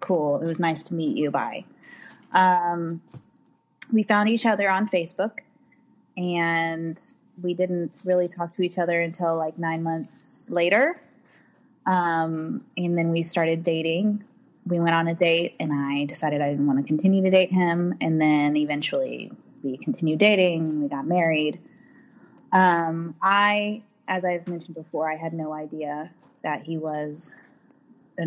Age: 20-39